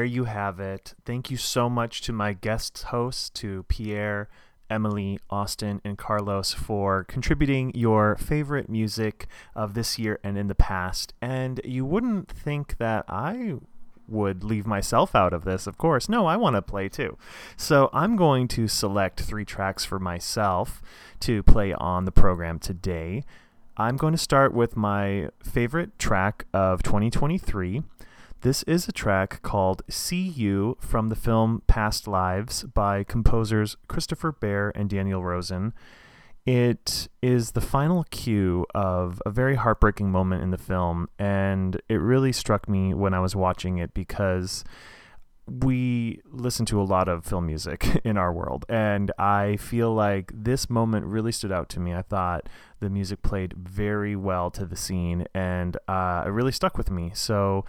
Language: English